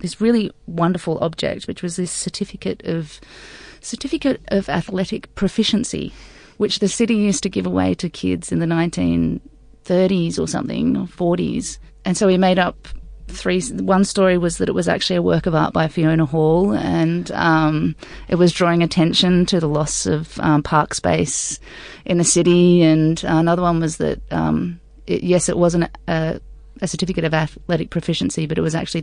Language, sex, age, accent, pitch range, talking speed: English, female, 30-49, Australian, 155-185 Hz, 175 wpm